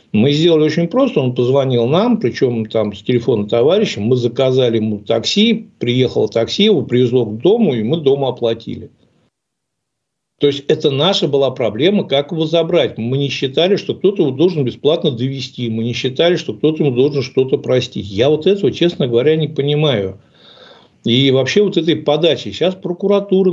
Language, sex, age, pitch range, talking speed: Russian, male, 60-79, 125-170 Hz, 170 wpm